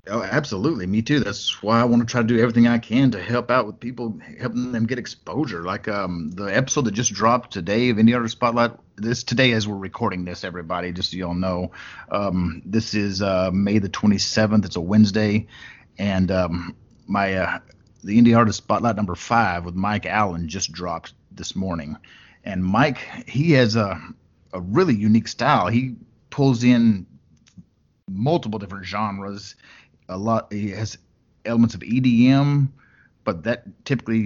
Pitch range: 100-120 Hz